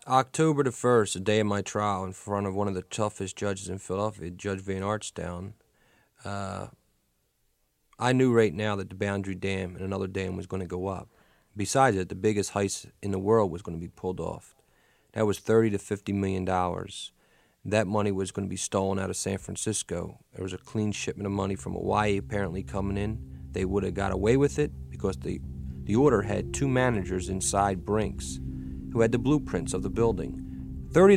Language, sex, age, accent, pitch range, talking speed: English, male, 30-49, American, 90-110 Hz, 195 wpm